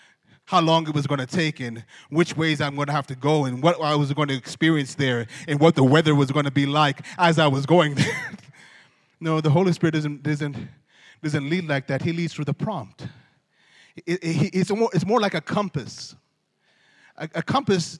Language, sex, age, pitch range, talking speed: English, male, 30-49, 150-180 Hz, 205 wpm